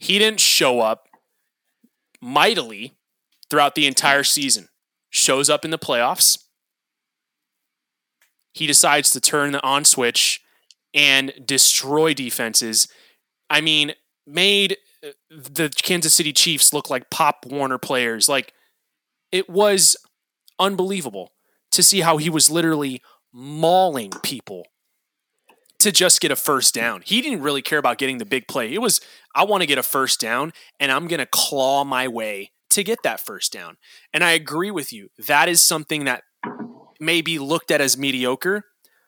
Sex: male